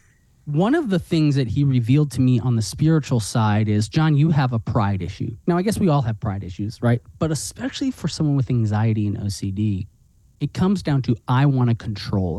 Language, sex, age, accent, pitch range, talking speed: English, male, 30-49, American, 110-145 Hz, 220 wpm